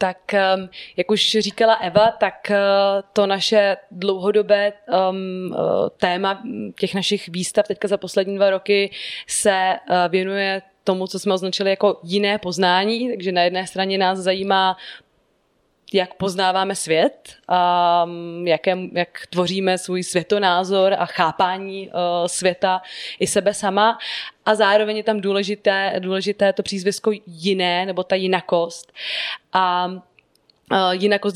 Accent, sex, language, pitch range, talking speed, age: native, female, Czech, 180-205 Hz, 115 wpm, 20-39